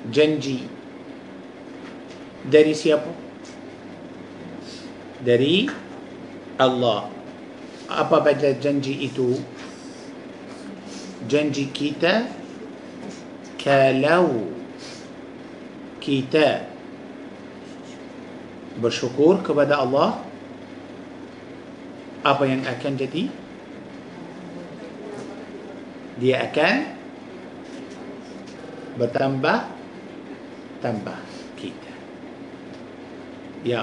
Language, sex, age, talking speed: Malay, male, 50-69, 45 wpm